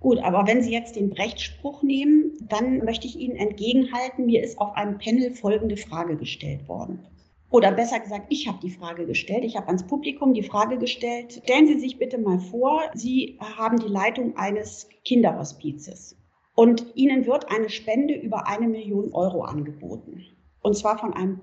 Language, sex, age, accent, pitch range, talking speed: German, female, 40-59, German, 195-250 Hz, 175 wpm